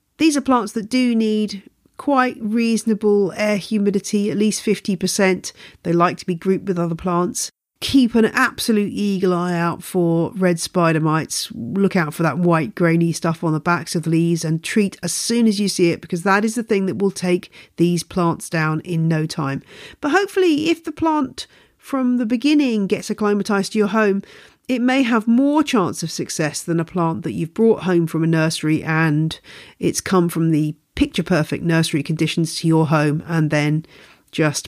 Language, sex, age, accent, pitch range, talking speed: English, female, 40-59, British, 155-220 Hz, 190 wpm